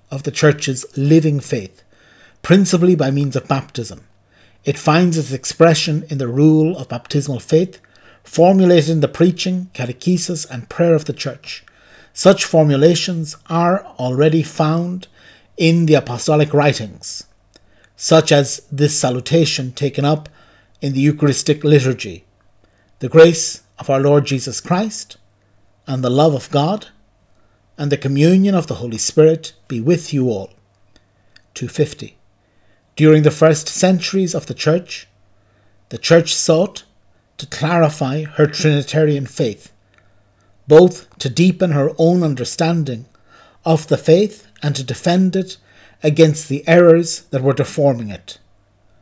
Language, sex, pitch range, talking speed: English, male, 120-160 Hz, 130 wpm